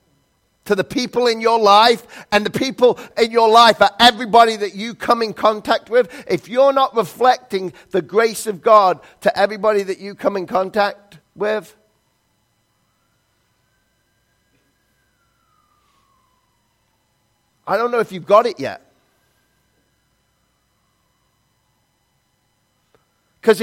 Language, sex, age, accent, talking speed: English, male, 50-69, British, 115 wpm